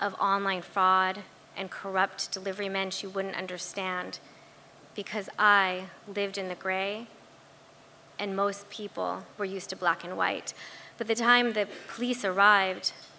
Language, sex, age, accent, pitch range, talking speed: English, female, 20-39, American, 185-215 Hz, 140 wpm